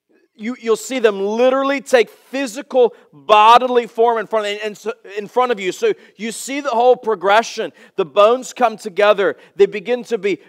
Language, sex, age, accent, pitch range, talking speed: English, male, 40-59, American, 180-240 Hz, 175 wpm